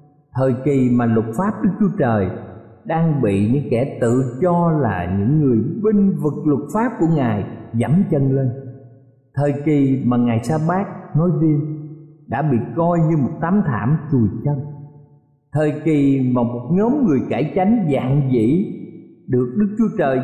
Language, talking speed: Vietnamese, 165 wpm